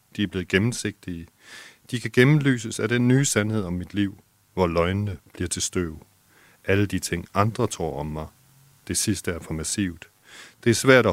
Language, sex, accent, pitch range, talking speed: Danish, male, native, 85-110 Hz, 190 wpm